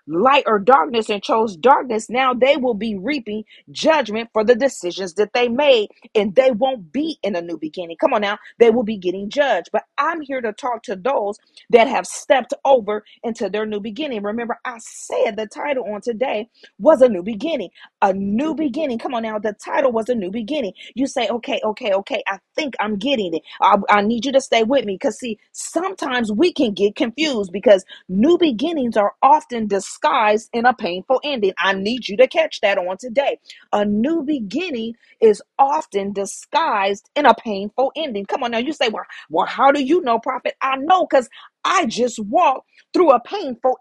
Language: English